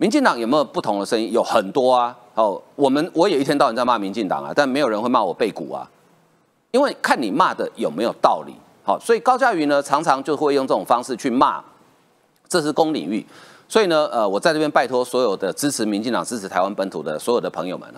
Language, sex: Chinese, male